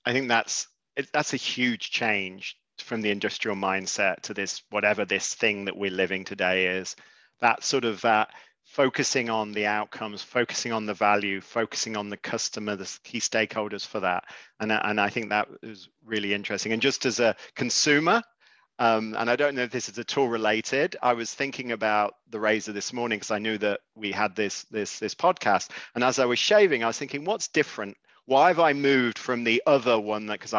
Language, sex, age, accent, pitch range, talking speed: English, male, 40-59, British, 105-140 Hz, 205 wpm